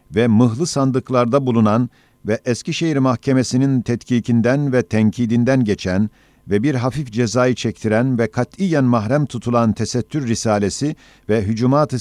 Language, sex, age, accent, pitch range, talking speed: Turkish, male, 50-69, native, 110-135 Hz, 120 wpm